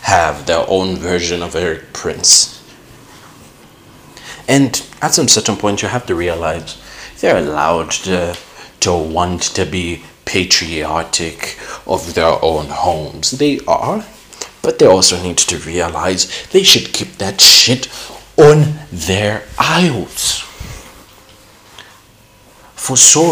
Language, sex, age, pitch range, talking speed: English, male, 30-49, 90-130 Hz, 120 wpm